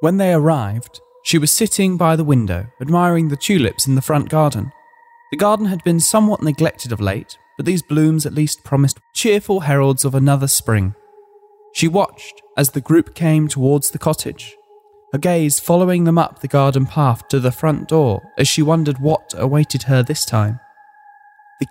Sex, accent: male, British